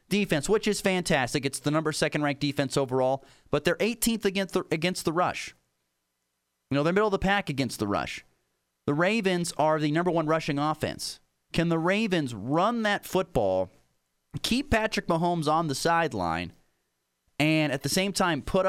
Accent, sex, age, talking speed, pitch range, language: American, male, 30-49, 175 wpm, 110-175 Hz, English